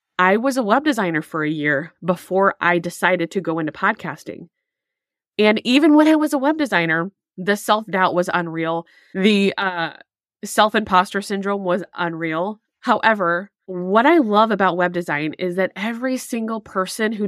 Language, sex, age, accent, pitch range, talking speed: English, female, 20-39, American, 175-220 Hz, 165 wpm